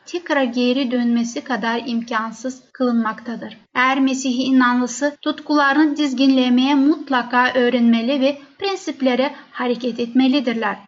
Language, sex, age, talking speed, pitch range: Turkish, female, 10-29, 95 wpm, 250-290 Hz